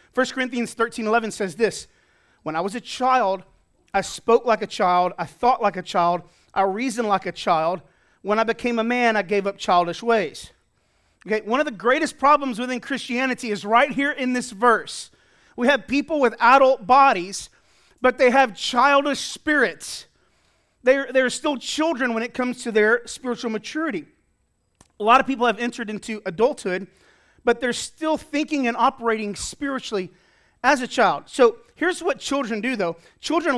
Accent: American